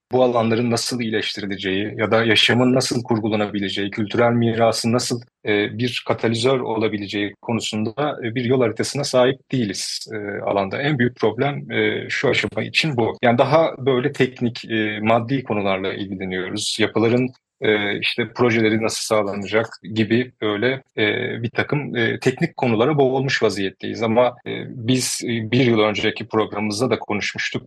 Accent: native